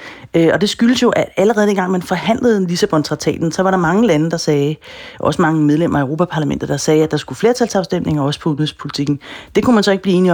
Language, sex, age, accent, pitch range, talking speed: Danish, female, 30-49, native, 150-190 Hz, 225 wpm